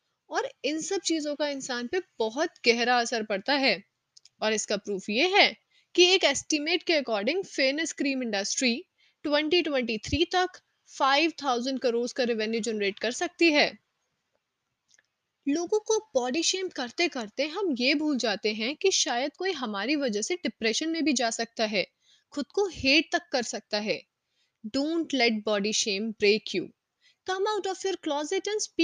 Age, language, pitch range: 20-39, Hindi, 235-330 Hz